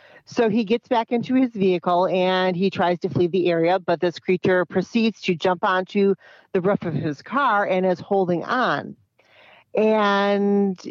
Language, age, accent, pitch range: English, 40-59, American, 175-215 Hz